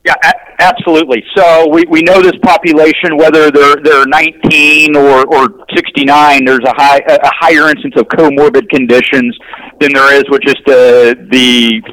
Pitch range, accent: 135-180 Hz, American